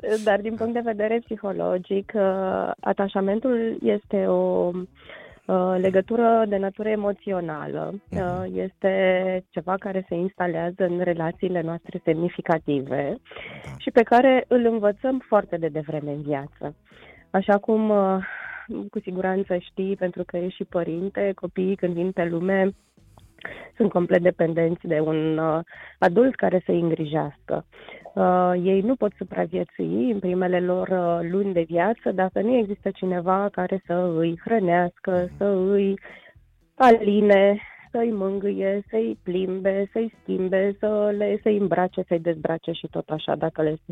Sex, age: female, 20-39